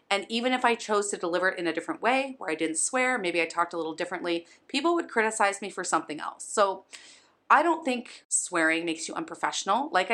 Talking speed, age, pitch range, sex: 225 wpm, 30-49, 175-230 Hz, female